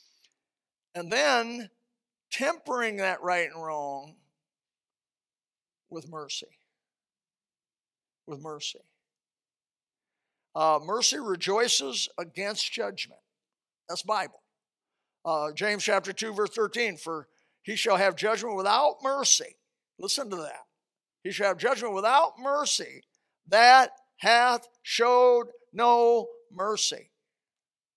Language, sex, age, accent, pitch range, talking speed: English, male, 60-79, American, 185-245 Hz, 95 wpm